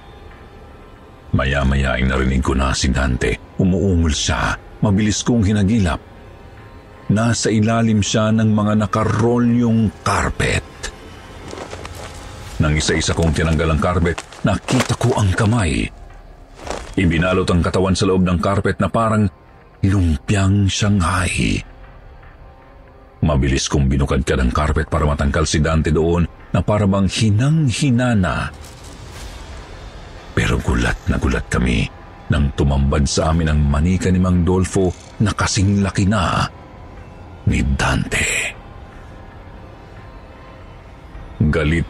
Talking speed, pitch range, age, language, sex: 110 wpm, 80-105 Hz, 50-69, Filipino, male